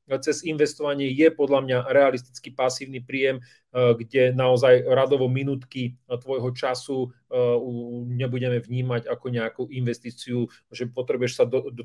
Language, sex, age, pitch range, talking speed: Slovak, male, 40-59, 125-155 Hz, 115 wpm